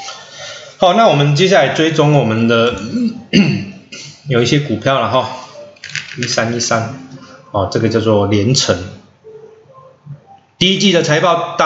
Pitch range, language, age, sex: 115-145 Hz, Chinese, 20-39, male